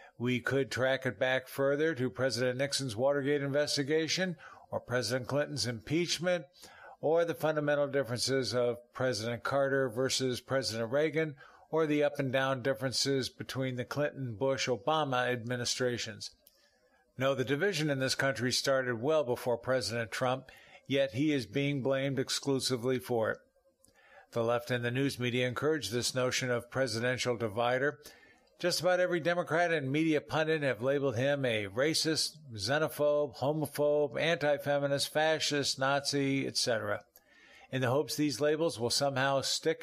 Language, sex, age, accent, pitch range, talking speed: English, male, 50-69, American, 125-150 Hz, 135 wpm